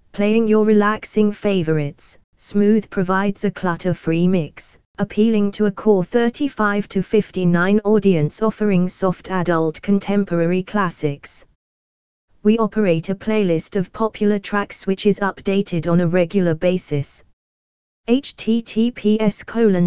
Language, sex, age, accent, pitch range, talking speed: English, female, 20-39, British, 160-215 Hz, 115 wpm